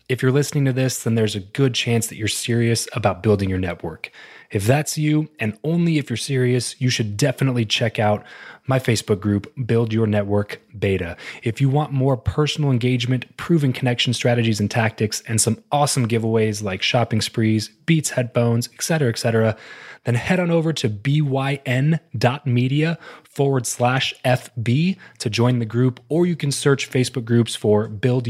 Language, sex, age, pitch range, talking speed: English, male, 20-39, 110-140 Hz, 175 wpm